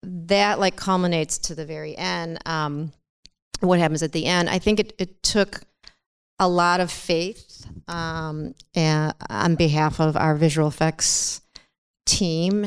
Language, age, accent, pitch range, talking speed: English, 40-59, American, 150-170 Hz, 145 wpm